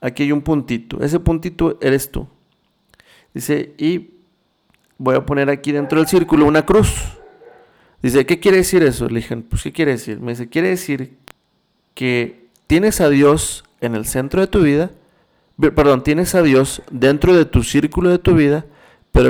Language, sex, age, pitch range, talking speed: Spanish, male, 40-59, 125-165 Hz, 175 wpm